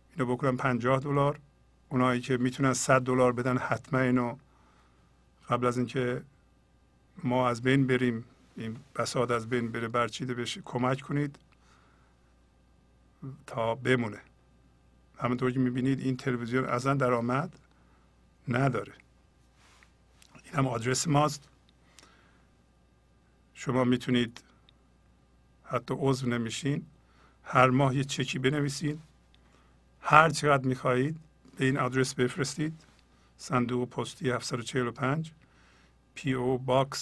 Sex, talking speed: male, 105 wpm